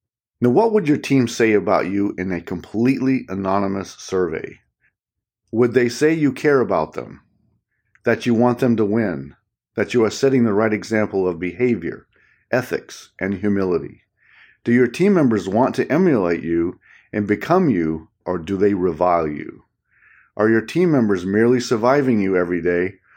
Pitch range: 95-125 Hz